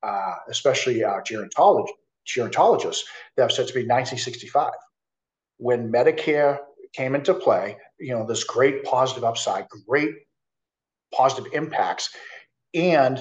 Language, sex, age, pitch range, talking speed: English, male, 50-69, 120-160 Hz, 110 wpm